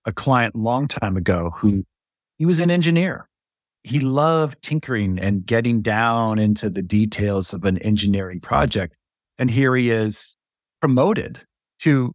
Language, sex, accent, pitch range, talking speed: English, male, American, 100-130 Hz, 145 wpm